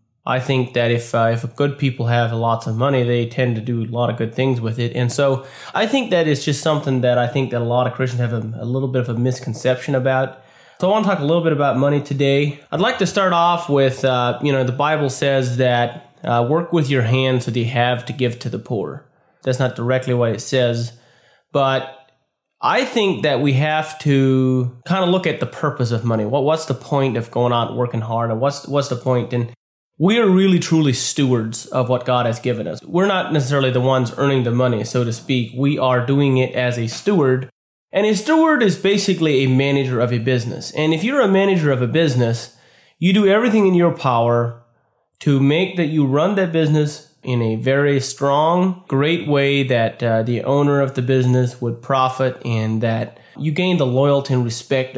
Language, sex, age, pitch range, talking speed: English, male, 20-39, 120-150 Hz, 225 wpm